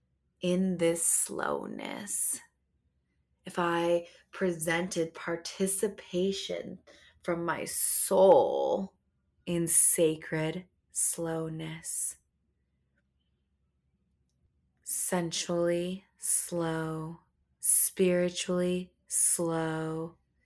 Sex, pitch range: female, 155-185 Hz